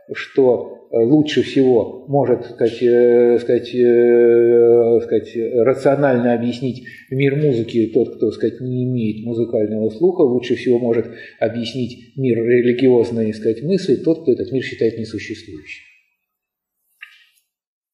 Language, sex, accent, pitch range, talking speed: Russian, male, native, 110-130 Hz, 105 wpm